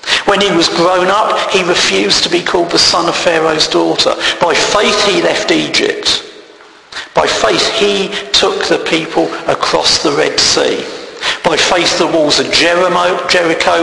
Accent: British